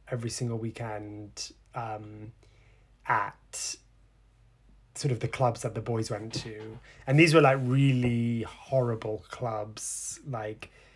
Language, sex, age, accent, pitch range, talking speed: English, male, 20-39, British, 110-130 Hz, 120 wpm